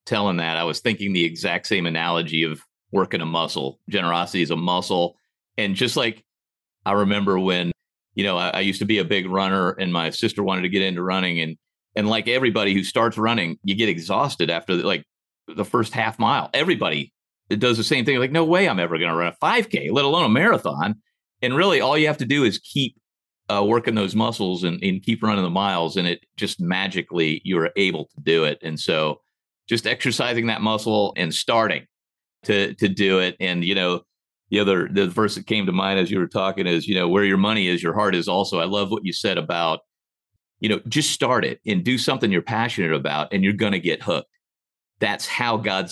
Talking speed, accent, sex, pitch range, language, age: 220 wpm, American, male, 85-105 Hz, English, 40-59